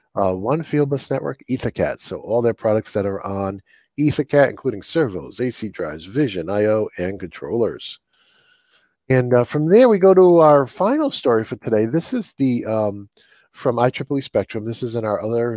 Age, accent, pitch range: 40-59, American, 110-145 Hz